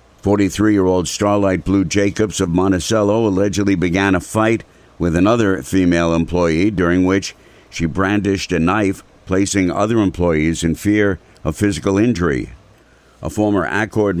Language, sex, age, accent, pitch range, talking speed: English, male, 60-79, American, 90-105 Hz, 130 wpm